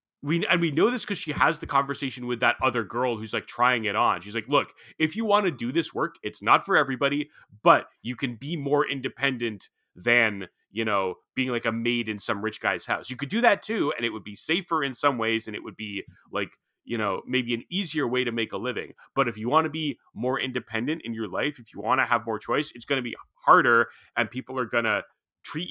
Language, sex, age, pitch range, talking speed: English, male, 30-49, 115-145 Hz, 250 wpm